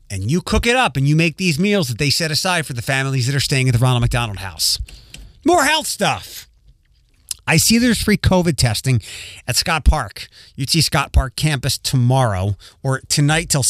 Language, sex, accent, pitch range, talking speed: English, male, American, 115-155 Hz, 195 wpm